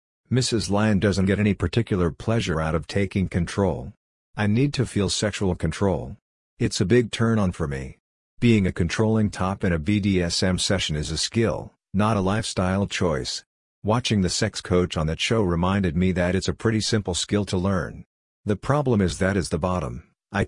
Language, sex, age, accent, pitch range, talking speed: English, male, 50-69, American, 90-105 Hz, 185 wpm